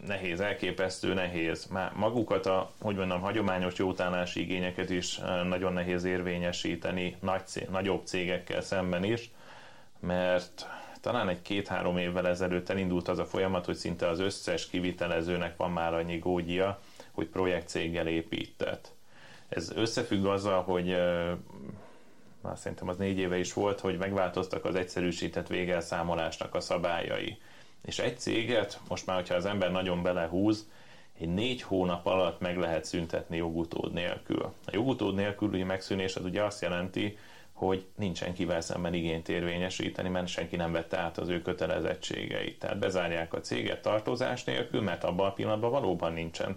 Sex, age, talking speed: male, 30-49, 145 wpm